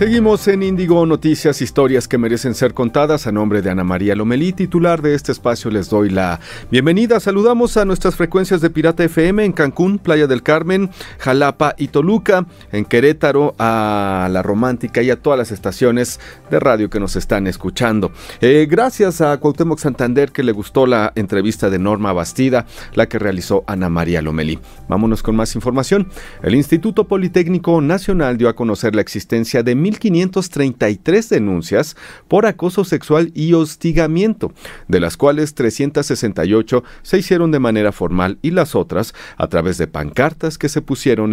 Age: 40-59